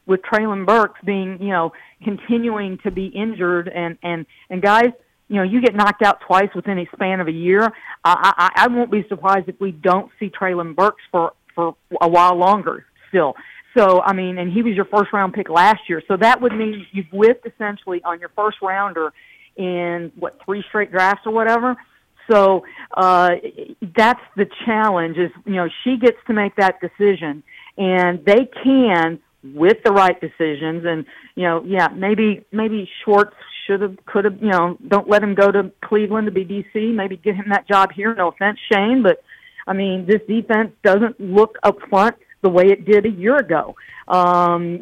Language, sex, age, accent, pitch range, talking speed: English, female, 50-69, American, 180-215 Hz, 190 wpm